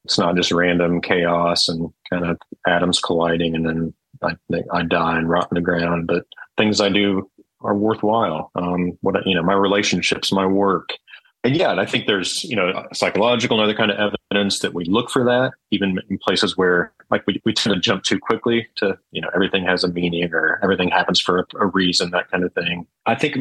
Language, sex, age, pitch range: English, male, 30-49, 90-105 Hz